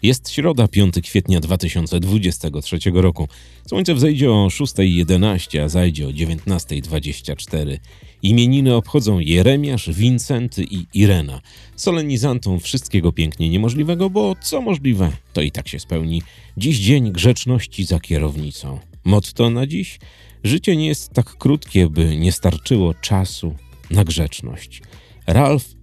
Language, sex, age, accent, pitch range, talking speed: Polish, male, 40-59, native, 85-125 Hz, 120 wpm